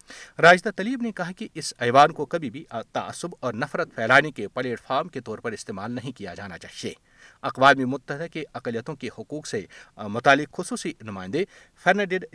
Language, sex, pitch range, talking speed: Urdu, male, 125-170 Hz, 170 wpm